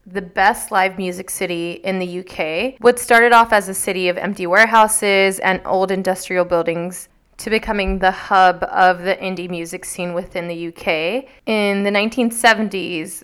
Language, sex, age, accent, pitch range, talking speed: English, female, 20-39, American, 180-205 Hz, 165 wpm